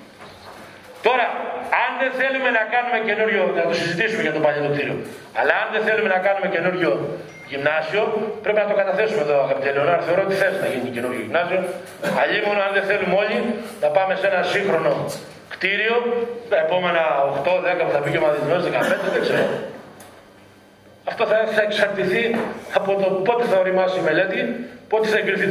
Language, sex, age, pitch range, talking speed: Greek, male, 40-59, 180-220 Hz, 165 wpm